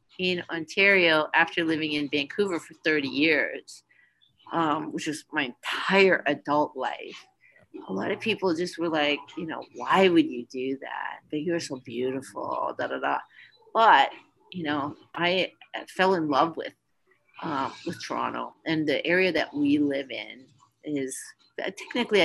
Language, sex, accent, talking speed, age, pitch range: English, female, American, 155 wpm, 40-59, 140-185 Hz